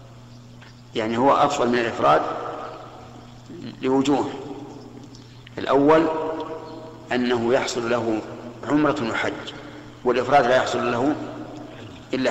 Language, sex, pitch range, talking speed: Arabic, male, 120-140 Hz, 85 wpm